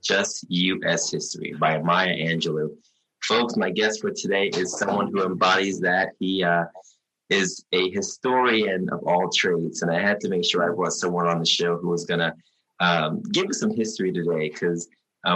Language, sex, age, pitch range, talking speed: English, male, 20-39, 85-110 Hz, 180 wpm